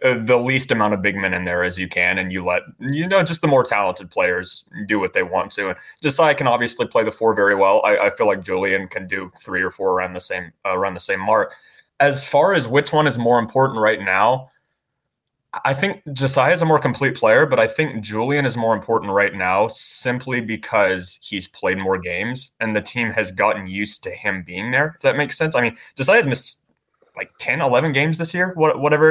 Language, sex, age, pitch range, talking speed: English, male, 20-39, 105-145 Hz, 230 wpm